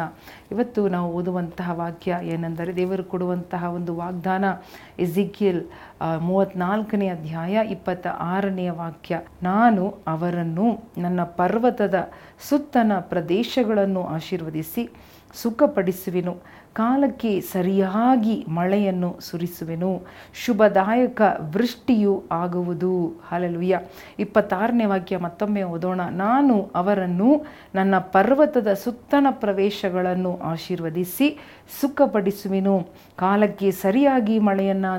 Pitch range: 180-215 Hz